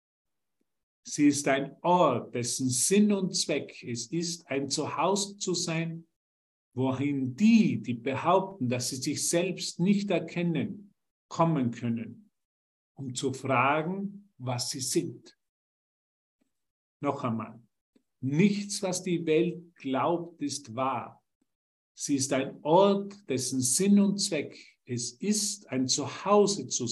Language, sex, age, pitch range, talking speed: German, male, 50-69, 130-190 Hz, 120 wpm